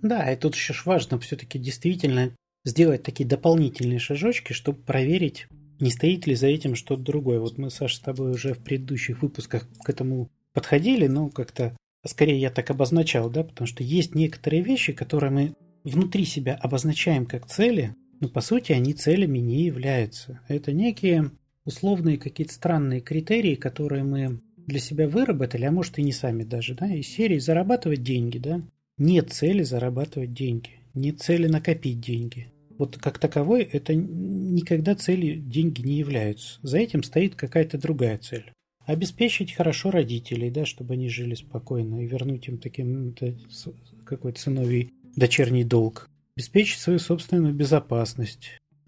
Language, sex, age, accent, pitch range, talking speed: Russian, male, 30-49, native, 125-165 Hz, 155 wpm